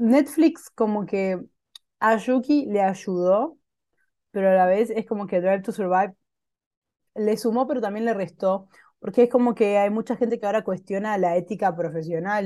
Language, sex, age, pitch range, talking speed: Spanish, female, 20-39, 185-240 Hz, 175 wpm